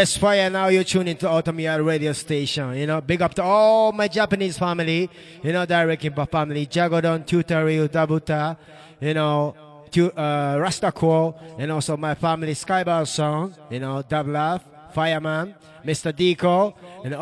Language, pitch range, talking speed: English, 145-180 Hz, 150 wpm